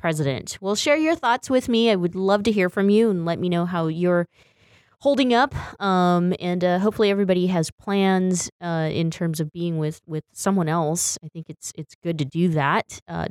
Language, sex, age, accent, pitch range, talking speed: English, female, 20-39, American, 160-230 Hz, 210 wpm